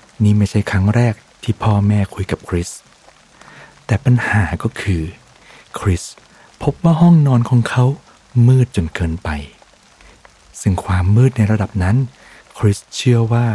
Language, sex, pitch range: Thai, male, 90-120 Hz